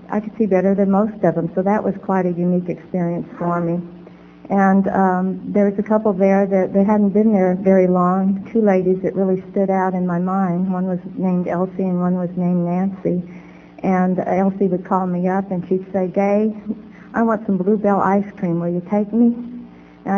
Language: English